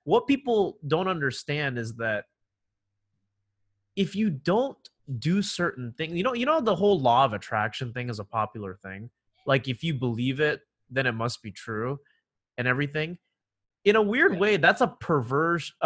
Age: 30-49